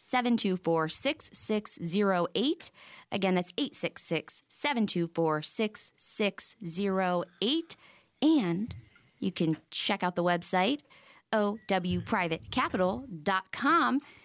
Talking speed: 85 wpm